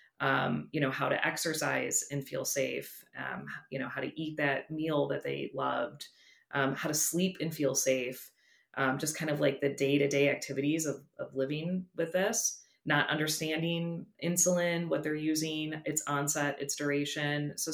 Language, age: English, 30-49